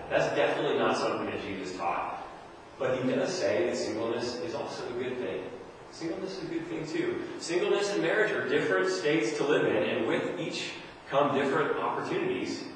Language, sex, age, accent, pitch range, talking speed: English, male, 30-49, American, 110-170 Hz, 185 wpm